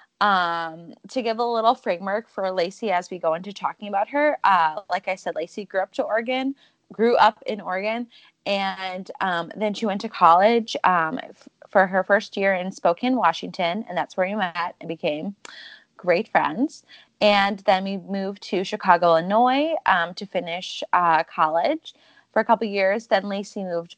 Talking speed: 180 wpm